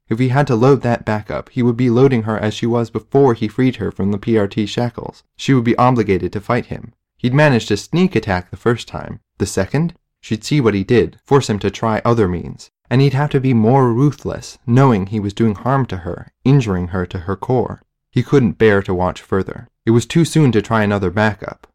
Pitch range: 100-125 Hz